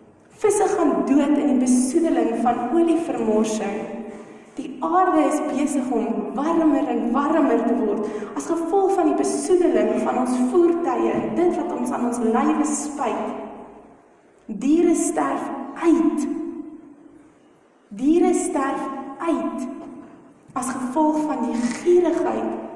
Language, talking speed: English, 120 wpm